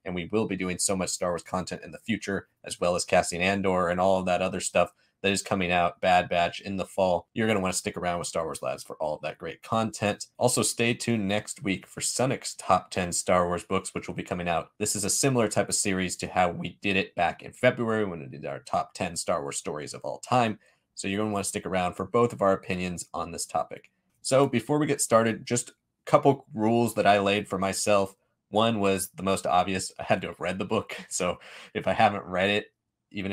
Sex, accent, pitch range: male, American, 95-115 Hz